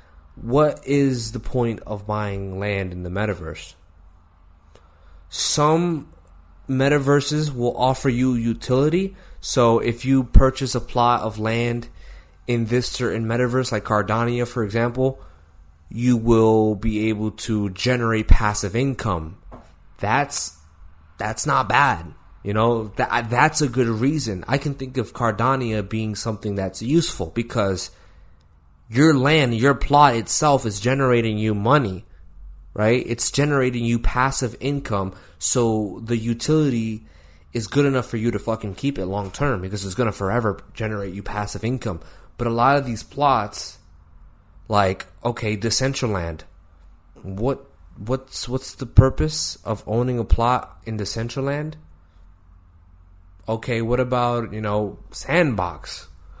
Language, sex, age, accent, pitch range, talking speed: English, male, 20-39, American, 90-125 Hz, 130 wpm